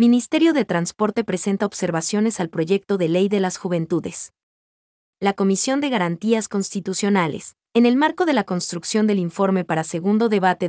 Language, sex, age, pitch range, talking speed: Spanish, female, 30-49, 180-225 Hz, 155 wpm